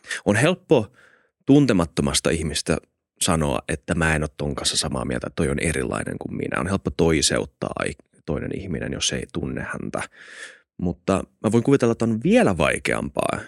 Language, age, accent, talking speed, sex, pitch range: Finnish, 20-39, native, 160 wpm, male, 85-115 Hz